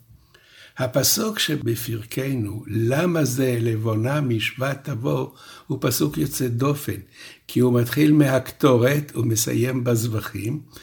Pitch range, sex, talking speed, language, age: 115-145 Hz, male, 95 wpm, Hebrew, 60-79